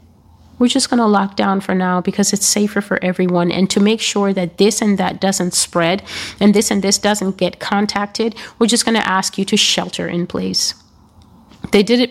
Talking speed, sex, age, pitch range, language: 215 wpm, female, 30-49, 175-215 Hz, English